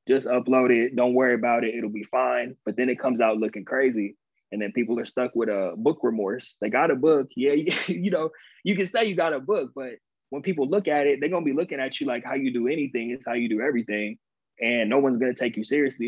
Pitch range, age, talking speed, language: 115-140 Hz, 20-39, 265 wpm, English